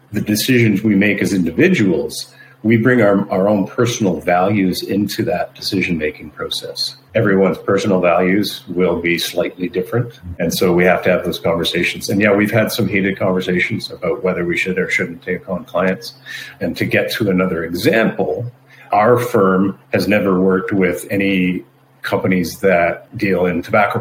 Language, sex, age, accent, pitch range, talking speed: English, male, 50-69, American, 90-110 Hz, 165 wpm